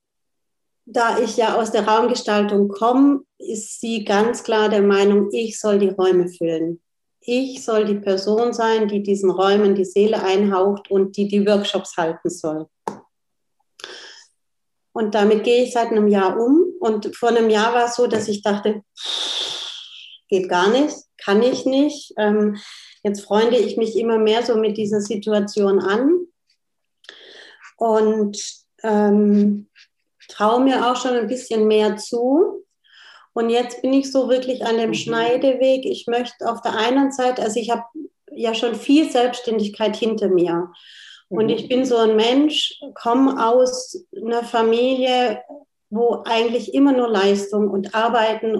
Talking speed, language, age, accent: 150 wpm, German, 40-59, German